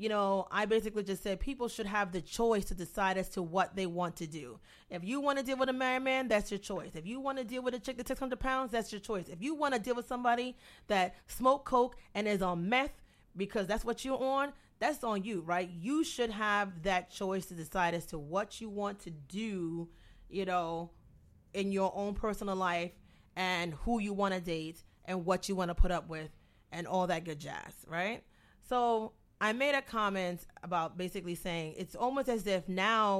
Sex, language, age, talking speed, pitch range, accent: female, English, 30-49, 225 wpm, 175-230 Hz, American